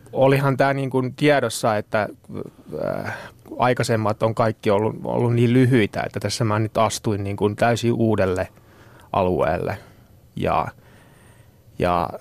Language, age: Finnish, 30-49